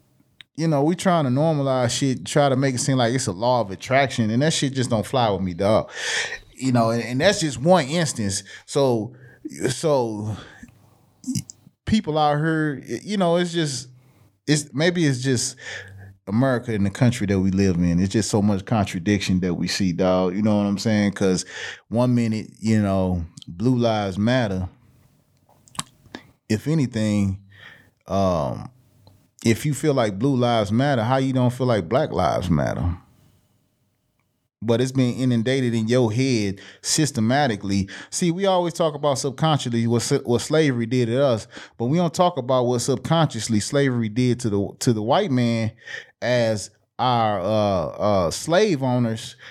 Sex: male